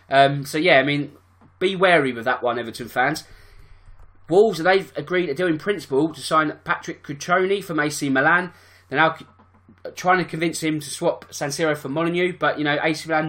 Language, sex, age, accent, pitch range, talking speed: English, male, 20-39, British, 130-160 Hz, 195 wpm